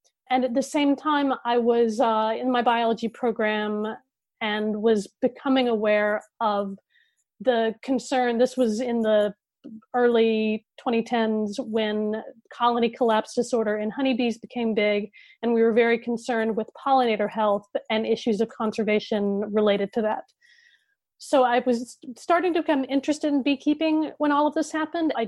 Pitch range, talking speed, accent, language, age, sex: 220-255 Hz, 150 wpm, American, English, 30-49, female